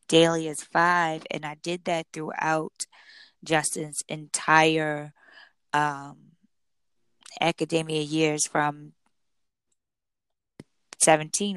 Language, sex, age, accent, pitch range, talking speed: English, female, 10-29, American, 155-175 Hz, 75 wpm